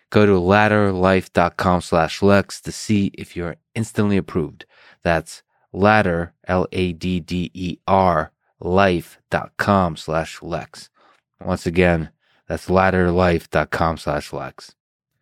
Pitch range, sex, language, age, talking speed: 85-100 Hz, male, English, 20-39, 90 wpm